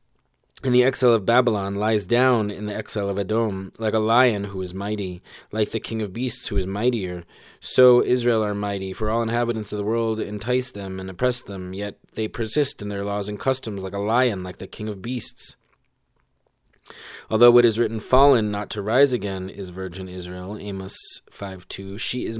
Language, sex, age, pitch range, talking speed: English, male, 20-39, 100-115 Hz, 200 wpm